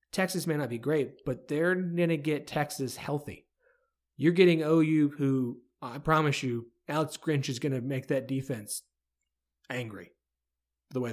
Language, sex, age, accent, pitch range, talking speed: English, male, 30-49, American, 120-165 Hz, 160 wpm